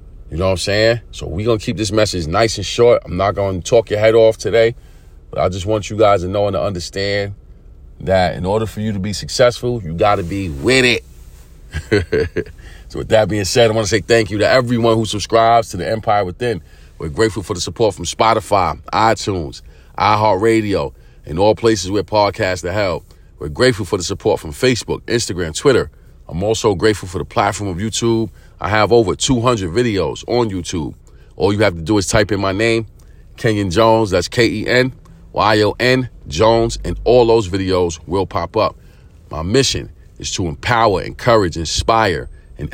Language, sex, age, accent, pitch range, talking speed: English, male, 40-59, American, 90-115 Hz, 195 wpm